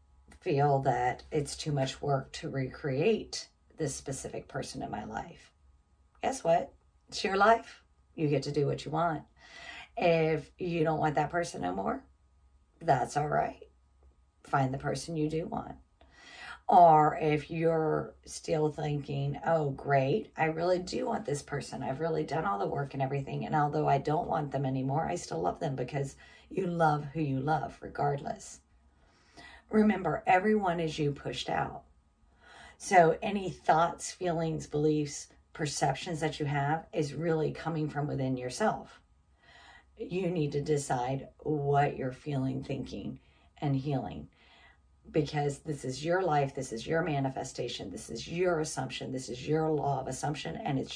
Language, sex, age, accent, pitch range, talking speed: English, female, 40-59, American, 135-160 Hz, 160 wpm